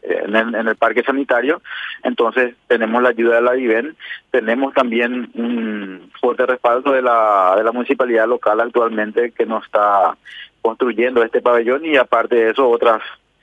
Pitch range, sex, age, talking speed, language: 115-125 Hz, male, 30-49, 160 wpm, Spanish